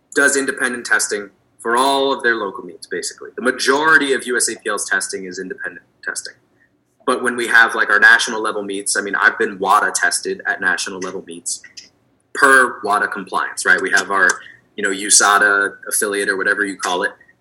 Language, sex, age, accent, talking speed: English, male, 20-39, American, 175 wpm